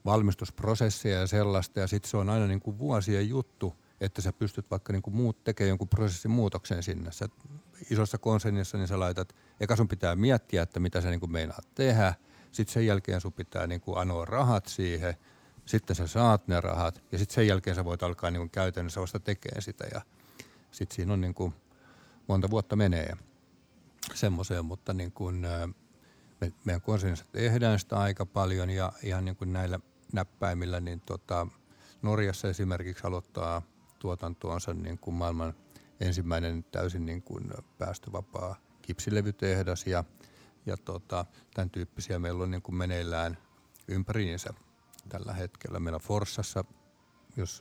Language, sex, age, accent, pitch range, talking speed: Finnish, male, 50-69, native, 90-105 Hz, 145 wpm